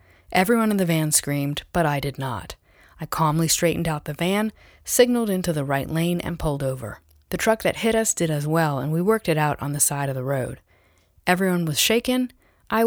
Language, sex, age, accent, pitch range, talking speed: English, female, 30-49, American, 140-195 Hz, 215 wpm